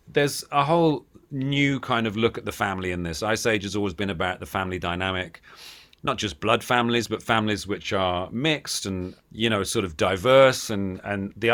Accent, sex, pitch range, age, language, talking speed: British, male, 95-115 Hz, 40-59, English, 205 wpm